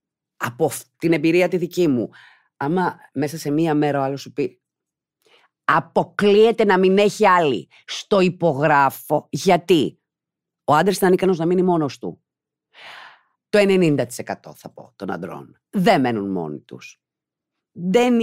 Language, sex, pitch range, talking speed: Greek, female, 130-180 Hz, 135 wpm